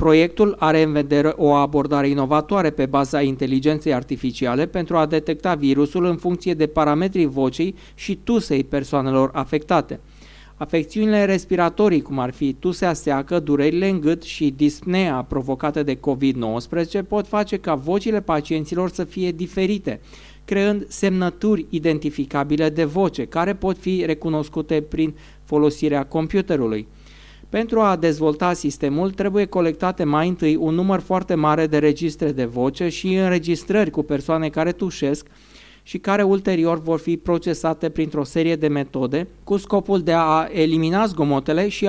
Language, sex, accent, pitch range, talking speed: Romanian, male, native, 150-180 Hz, 140 wpm